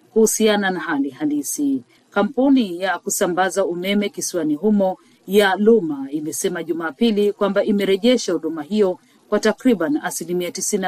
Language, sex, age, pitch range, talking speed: Swahili, female, 40-59, 175-225 Hz, 110 wpm